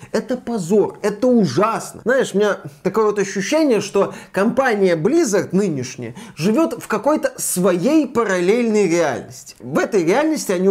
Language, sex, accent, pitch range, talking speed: Russian, male, native, 175-230 Hz, 135 wpm